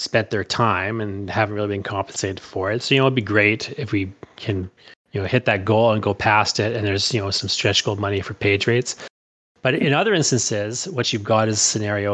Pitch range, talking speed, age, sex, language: 105-130 Hz, 235 wpm, 30-49, male, English